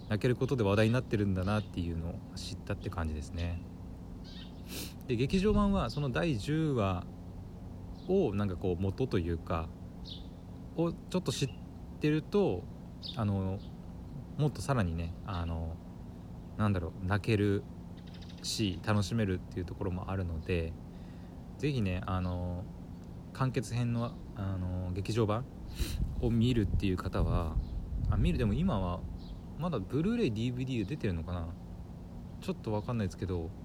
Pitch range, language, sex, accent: 90-110 Hz, Japanese, male, native